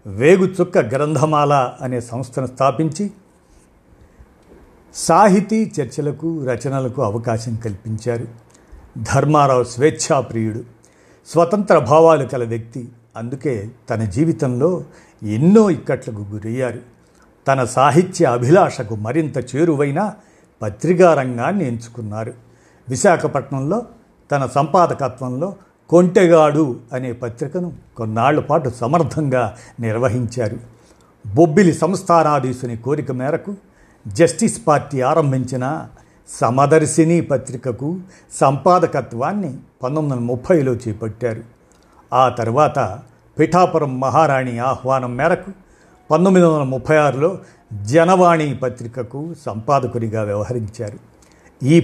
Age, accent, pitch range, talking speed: 50-69, native, 120-165 Hz, 75 wpm